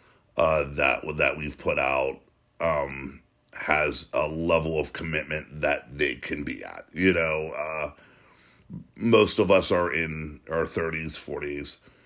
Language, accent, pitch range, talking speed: English, American, 75-85 Hz, 140 wpm